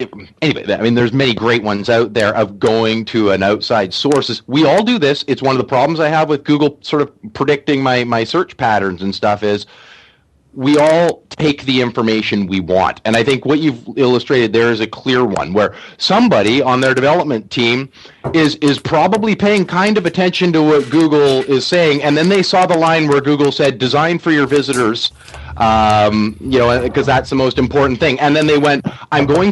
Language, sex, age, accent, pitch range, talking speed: English, male, 30-49, American, 120-150 Hz, 205 wpm